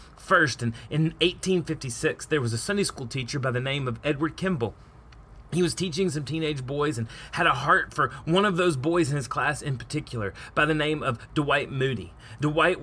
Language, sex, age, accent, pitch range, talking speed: English, male, 30-49, American, 140-185 Hz, 200 wpm